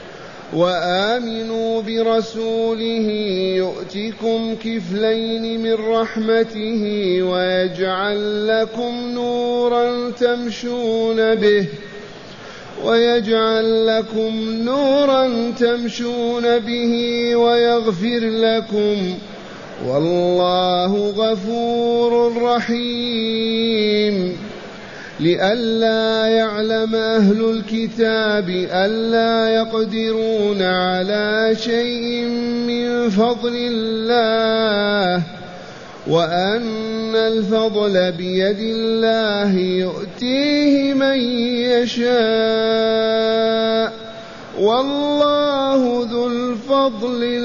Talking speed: 55 wpm